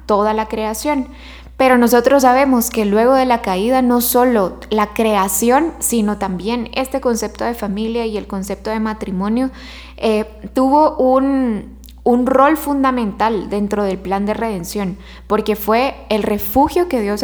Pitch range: 205-245 Hz